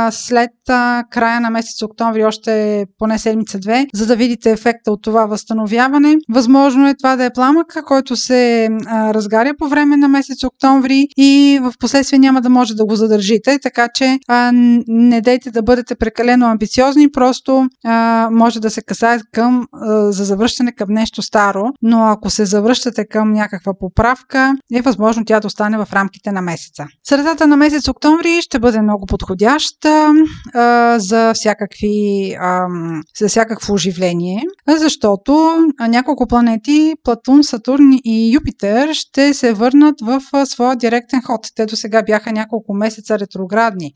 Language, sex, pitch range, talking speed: Bulgarian, female, 215-265 Hz, 155 wpm